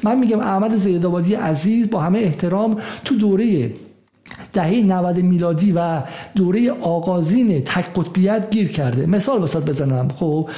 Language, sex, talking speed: Persian, male, 135 wpm